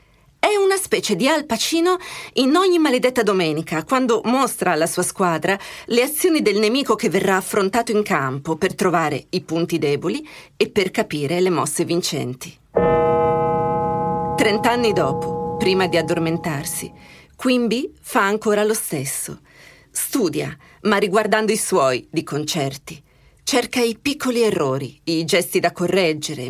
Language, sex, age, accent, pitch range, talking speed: Italian, female, 40-59, native, 165-245 Hz, 135 wpm